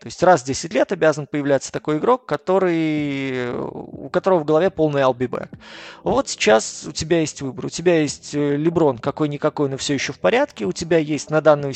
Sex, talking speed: male, 195 wpm